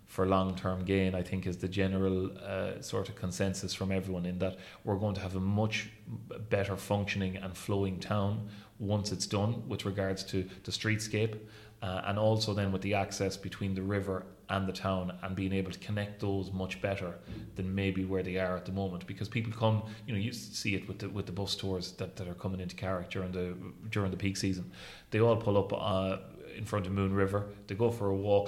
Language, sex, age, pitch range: English, male, 30-49, 95-105 Hz